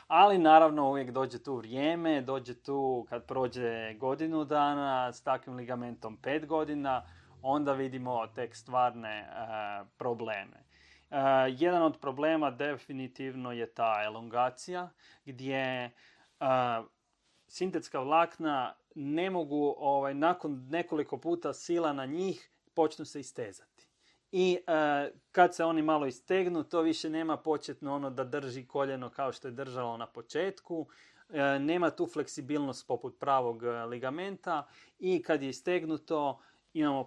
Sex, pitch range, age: male, 130-155 Hz, 30-49